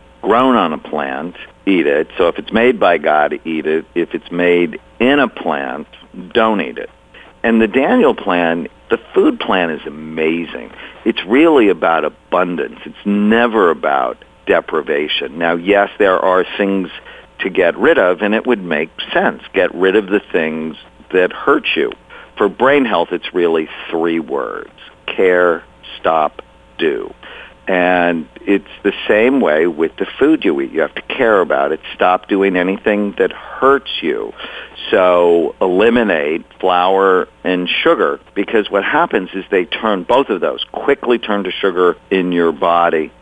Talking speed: 160 wpm